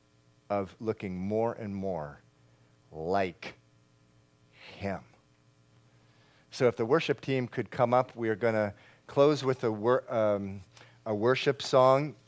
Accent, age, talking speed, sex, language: American, 40-59, 130 wpm, male, English